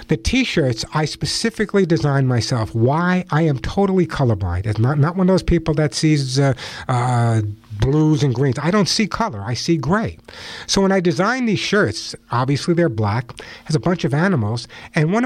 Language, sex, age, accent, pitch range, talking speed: English, male, 60-79, American, 135-180 Hz, 190 wpm